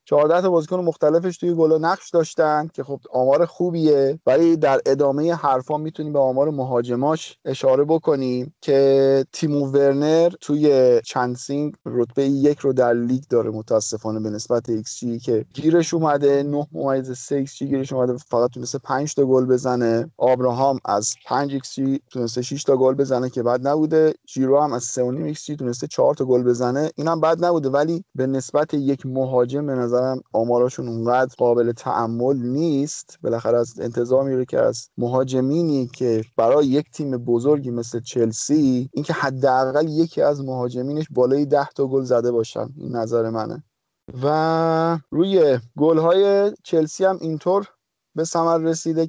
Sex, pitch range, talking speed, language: male, 125-155 Hz, 145 wpm, Persian